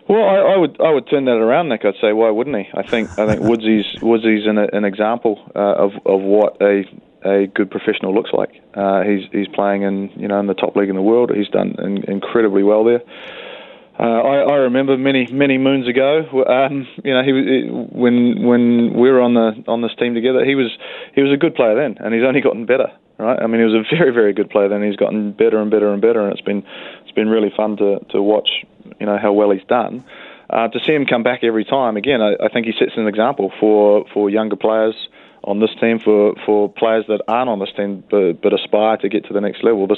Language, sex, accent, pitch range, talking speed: English, male, Australian, 105-120 Hz, 250 wpm